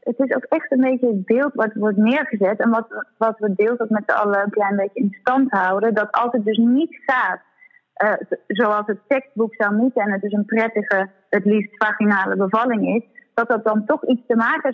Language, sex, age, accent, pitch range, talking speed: Dutch, female, 30-49, Dutch, 210-260 Hz, 225 wpm